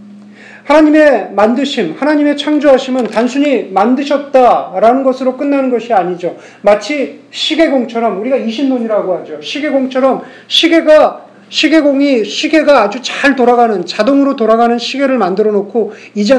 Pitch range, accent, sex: 205-270 Hz, native, male